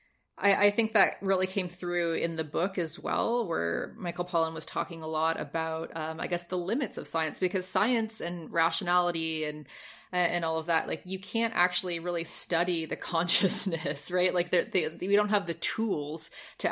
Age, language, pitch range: 20-39, English, 165-190 Hz